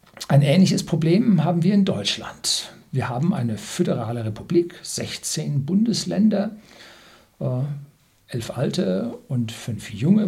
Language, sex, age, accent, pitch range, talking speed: German, male, 60-79, German, 120-175 Hz, 110 wpm